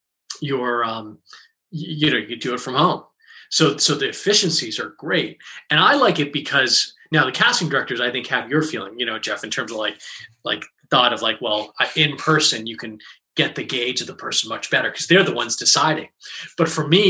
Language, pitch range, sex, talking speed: English, 125-160 Hz, male, 215 wpm